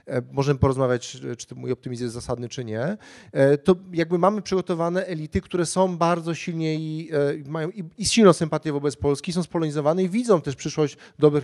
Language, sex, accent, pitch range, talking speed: Polish, male, native, 140-170 Hz, 185 wpm